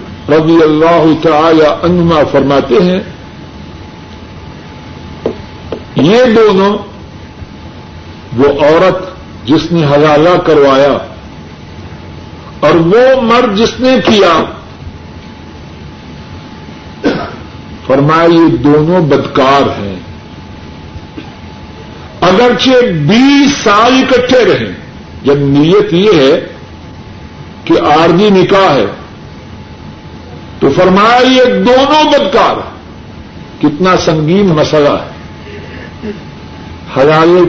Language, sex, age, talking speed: Urdu, male, 50-69, 80 wpm